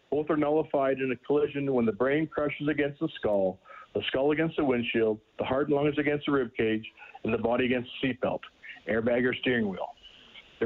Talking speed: 210 wpm